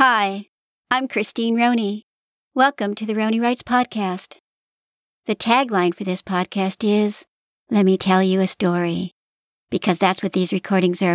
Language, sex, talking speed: English, male, 150 wpm